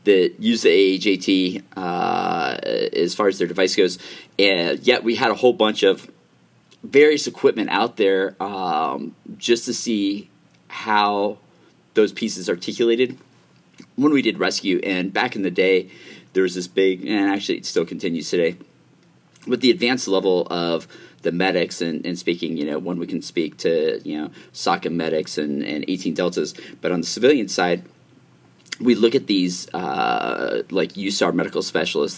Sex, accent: male, American